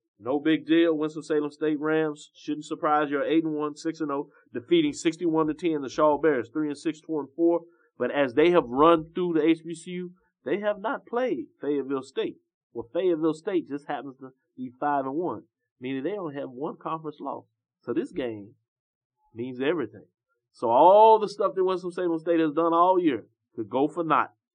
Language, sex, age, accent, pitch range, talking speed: English, male, 30-49, American, 125-160 Hz, 165 wpm